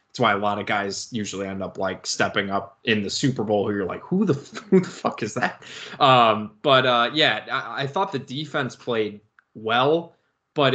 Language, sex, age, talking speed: English, male, 20-39, 210 wpm